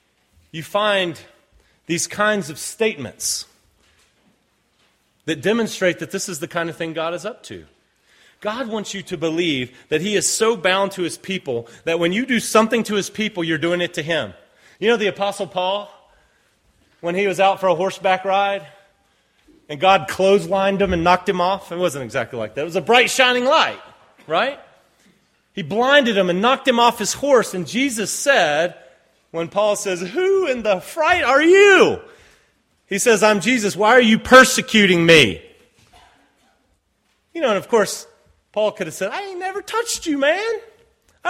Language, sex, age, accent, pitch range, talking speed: English, male, 30-49, American, 165-230 Hz, 180 wpm